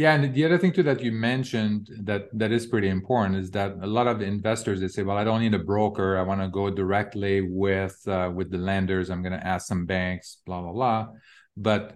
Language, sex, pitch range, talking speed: English, male, 95-105 Hz, 240 wpm